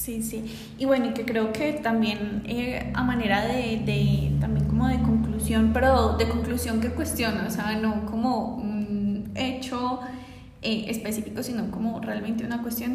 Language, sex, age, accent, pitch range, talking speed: Spanish, female, 20-39, Colombian, 215-245 Hz, 160 wpm